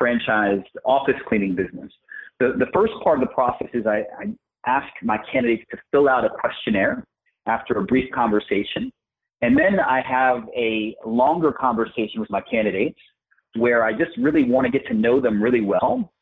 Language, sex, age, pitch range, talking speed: English, male, 30-49, 110-135 Hz, 180 wpm